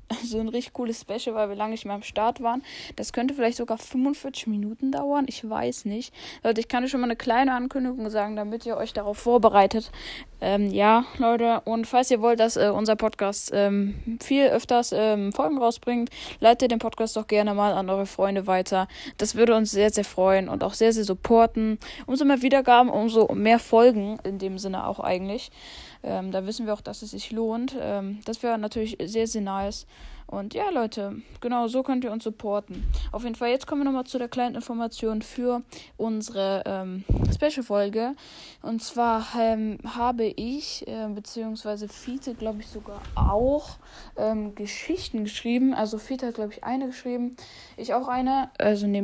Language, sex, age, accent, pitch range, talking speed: German, female, 10-29, German, 210-245 Hz, 190 wpm